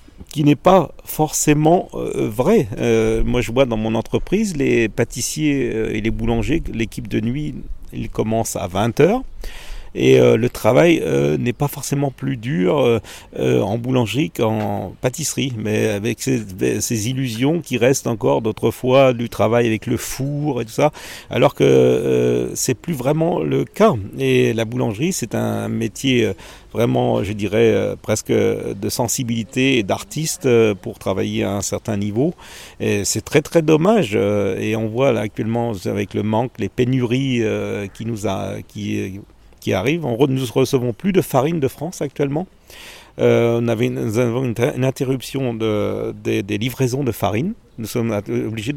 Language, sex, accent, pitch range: French, male, French, 105-135 Hz